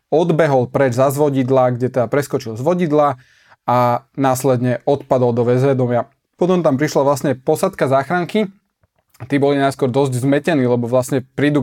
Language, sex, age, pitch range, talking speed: Slovak, male, 20-39, 125-150 Hz, 145 wpm